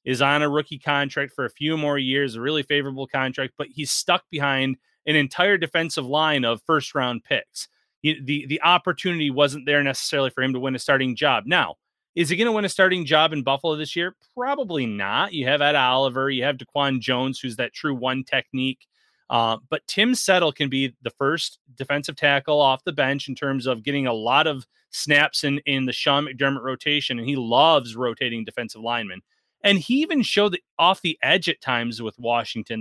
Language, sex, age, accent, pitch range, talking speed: English, male, 30-49, American, 130-160 Hz, 205 wpm